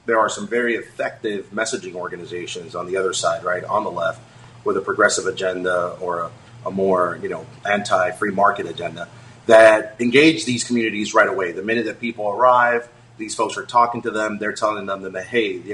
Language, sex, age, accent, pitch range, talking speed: English, male, 30-49, American, 105-125 Hz, 195 wpm